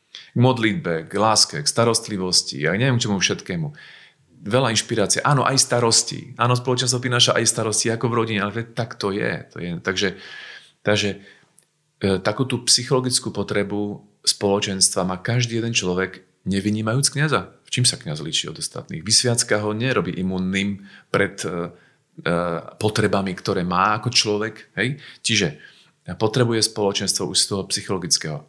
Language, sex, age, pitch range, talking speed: Slovak, male, 40-59, 95-125 Hz, 145 wpm